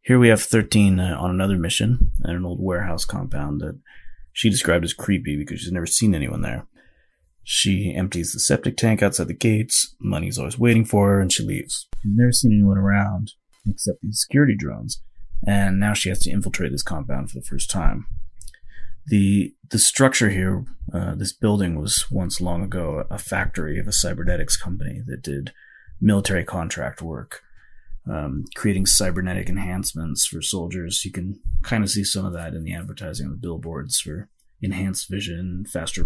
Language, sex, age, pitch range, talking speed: English, male, 30-49, 85-100 Hz, 175 wpm